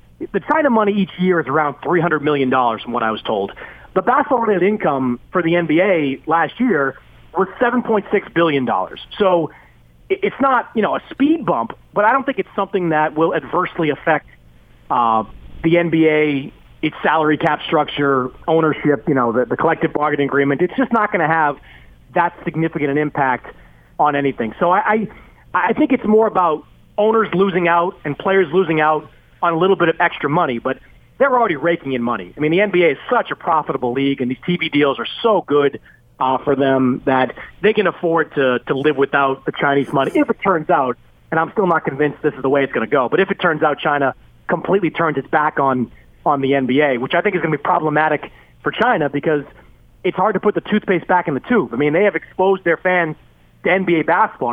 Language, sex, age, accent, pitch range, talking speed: English, male, 30-49, American, 140-185 Hz, 215 wpm